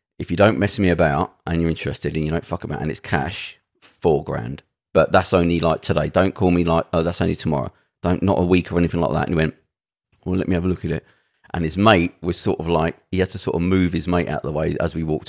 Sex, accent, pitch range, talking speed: male, British, 80-95 Hz, 285 wpm